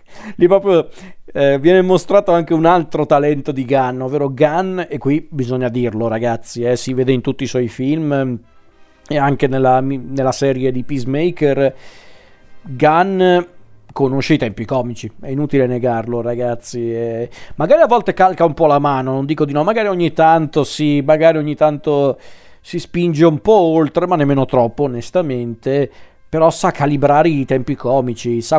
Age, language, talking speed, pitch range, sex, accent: 40-59, Italian, 165 wpm, 130-170 Hz, male, native